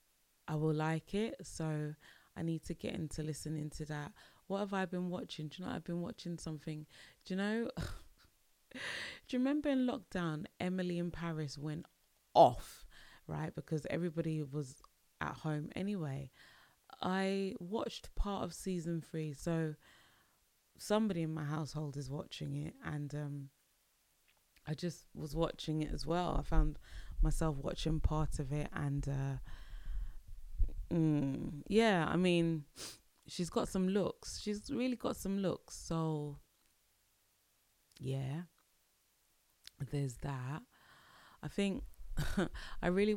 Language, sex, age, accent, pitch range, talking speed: English, female, 20-39, British, 145-175 Hz, 135 wpm